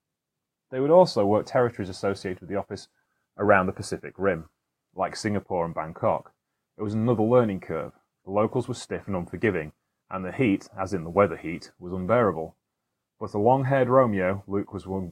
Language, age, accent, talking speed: English, 30-49, British, 180 wpm